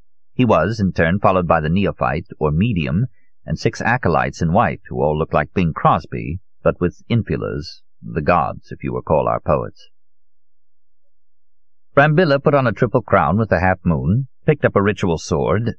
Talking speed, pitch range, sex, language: 175 wpm, 85-115 Hz, male, English